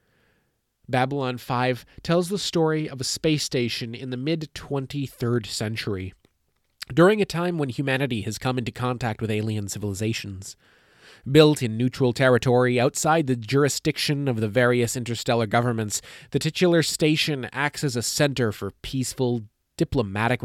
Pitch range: 115-150 Hz